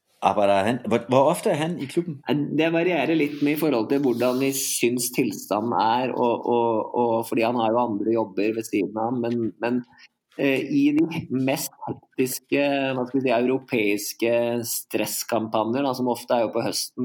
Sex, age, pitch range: male, 20-39, 110-135 Hz